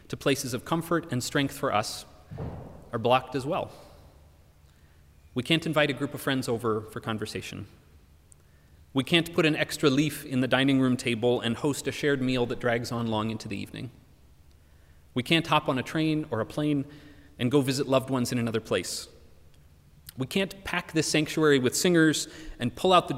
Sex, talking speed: male, 190 wpm